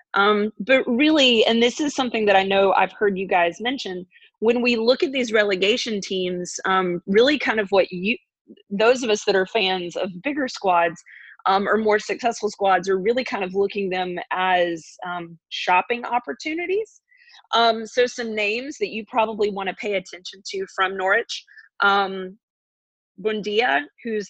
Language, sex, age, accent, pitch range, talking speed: English, female, 30-49, American, 190-235 Hz, 170 wpm